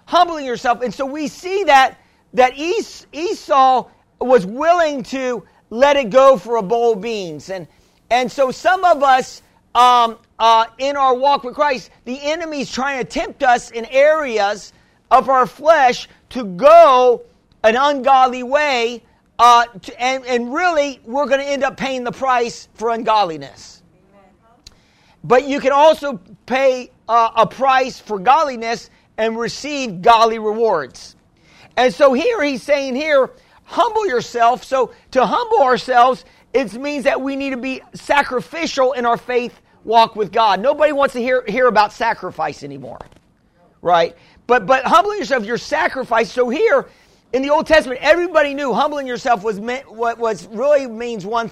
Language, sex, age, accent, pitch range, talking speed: English, male, 50-69, American, 230-280 Hz, 160 wpm